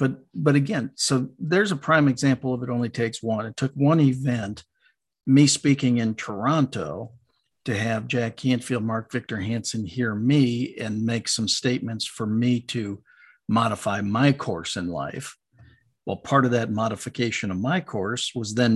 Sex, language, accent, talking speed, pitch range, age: male, English, American, 165 wpm, 110-130 Hz, 50-69